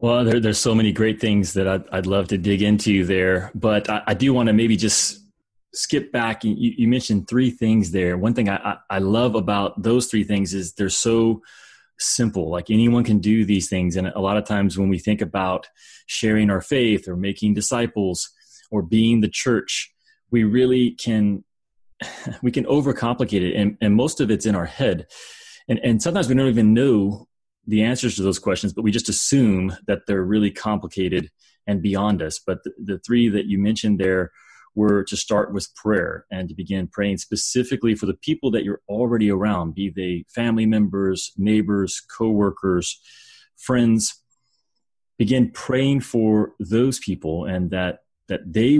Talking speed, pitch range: 180 wpm, 95-115 Hz